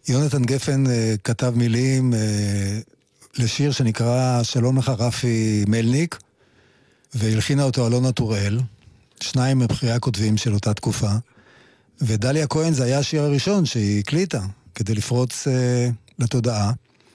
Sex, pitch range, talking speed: male, 115-145 Hz, 120 wpm